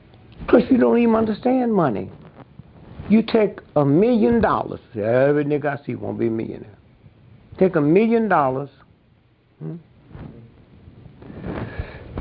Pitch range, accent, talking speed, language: 120-185 Hz, American, 120 wpm, English